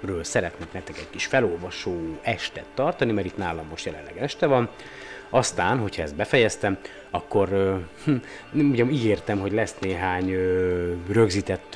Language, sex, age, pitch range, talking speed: Hungarian, male, 30-49, 85-105 Hz, 145 wpm